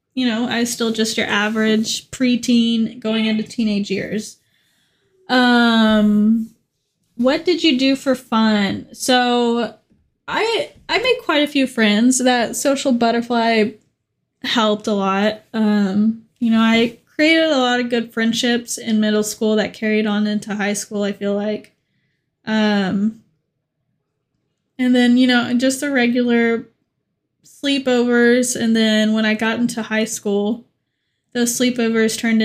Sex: female